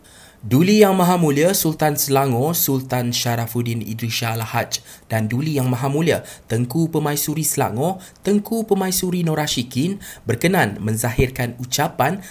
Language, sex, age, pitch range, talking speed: Malay, male, 20-39, 125-185 Hz, 120 wpm